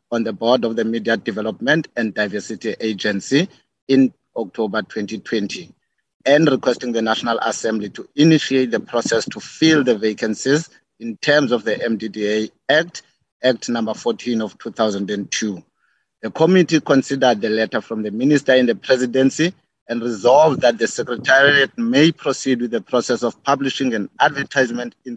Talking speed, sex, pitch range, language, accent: 150 wpm, male, 110-140 Hz, English, South African